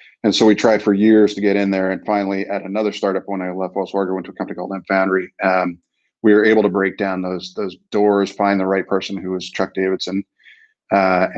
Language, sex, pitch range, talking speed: English, male, 90-100 Hz, 245 wpm